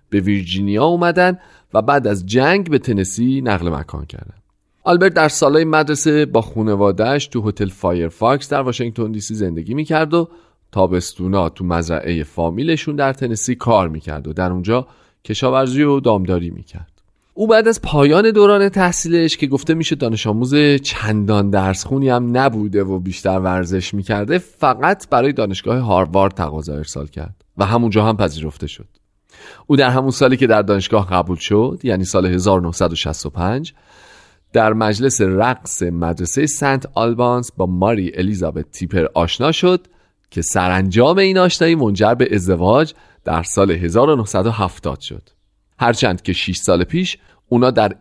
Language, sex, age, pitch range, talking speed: Persian, male, 40-59, 90-135 Hz, 145 wpm